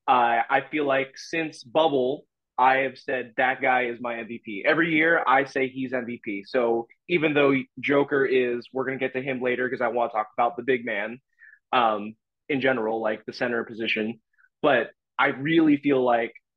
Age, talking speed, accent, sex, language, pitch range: 20-39, 190 wpm, American, male, English, 125-150 Hz